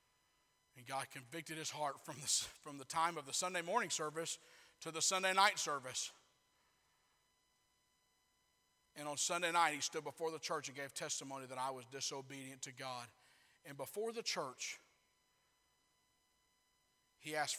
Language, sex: English, male